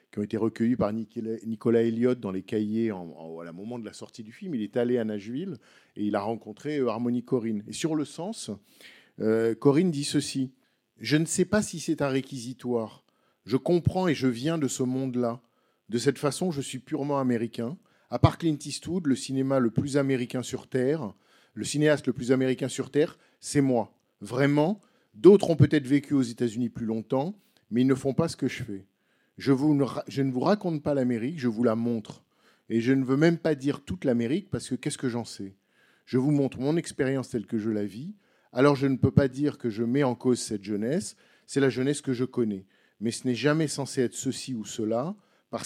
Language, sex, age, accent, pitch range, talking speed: French, male, 50-69, French, 115-145 Hz, 220 wpm